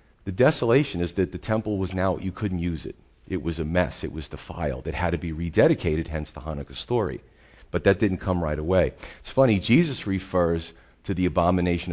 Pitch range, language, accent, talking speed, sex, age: 85-105 Hz, English, American, 205 wpm, male, 40-59